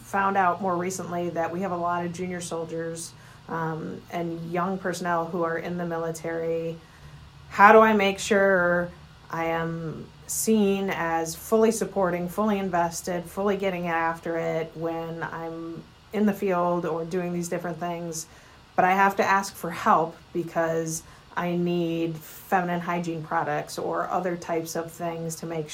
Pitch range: 165-190 Hz